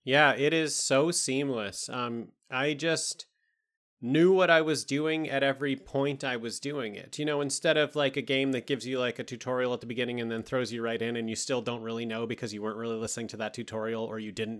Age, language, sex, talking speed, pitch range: 30-49, English, male, 245 wpm, 125-155 Hz